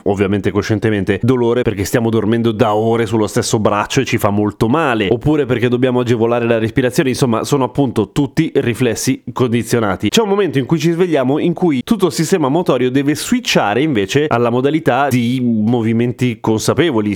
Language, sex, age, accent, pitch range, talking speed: Italian, male, 30-49, native, 115-165 Hz, 170 wpm